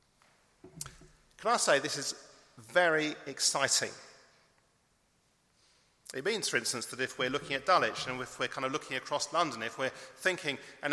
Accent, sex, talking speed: British, male, 155 wpm